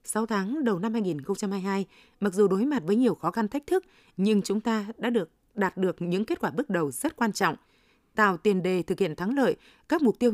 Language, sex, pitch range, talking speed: Vietnamese, female, 185-235 Hz, 230 wpm